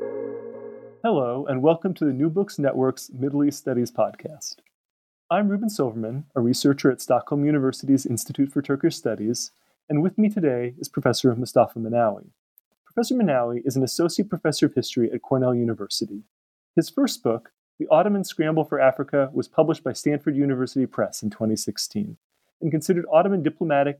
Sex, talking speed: male, 160 wpm